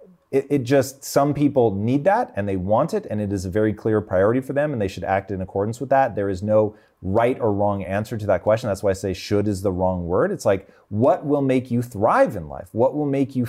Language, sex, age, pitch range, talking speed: English, male, 30-49, 95-120 Hz, 265 wpm